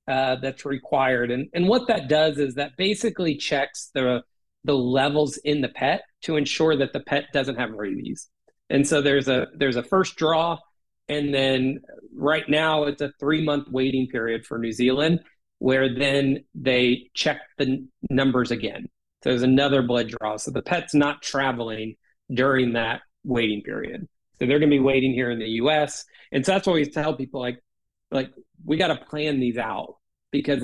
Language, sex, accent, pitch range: English, male, American, 125-150 Hz